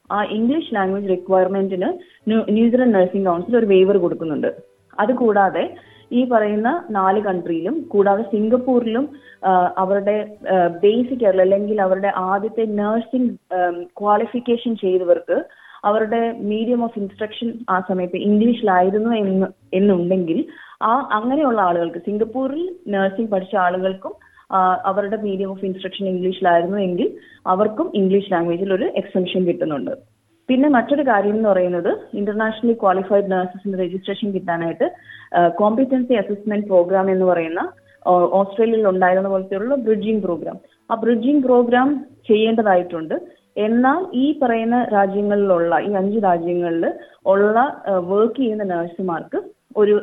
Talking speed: 105 wpm